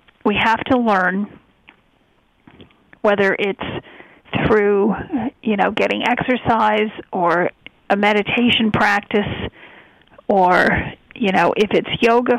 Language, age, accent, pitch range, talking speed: English, 40-59, American, 200-235 Hz, 100 wpm